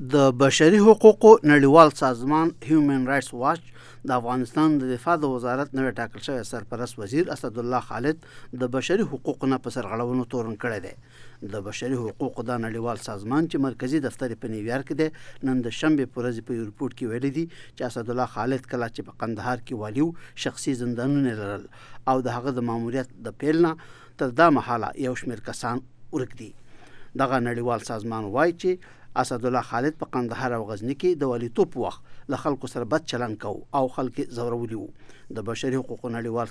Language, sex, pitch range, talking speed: English, male, 120-140 Hz, 180 wpm